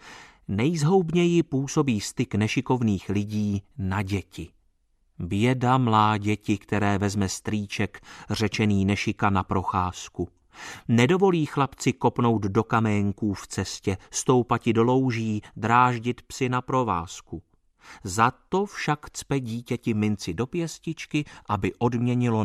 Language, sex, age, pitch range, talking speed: Czech, male, 30-49, 105-150 Hz, 110 wpm